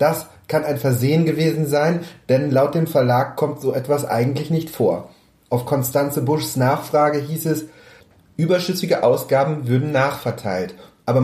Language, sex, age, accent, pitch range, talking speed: German, male, 30-49, German, 120-155 Hz, 145 wpm